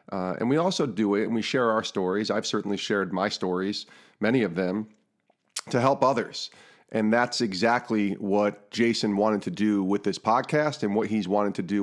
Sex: male